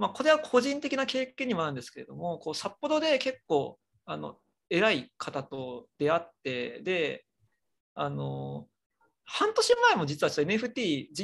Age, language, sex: 40-59, Japanese, male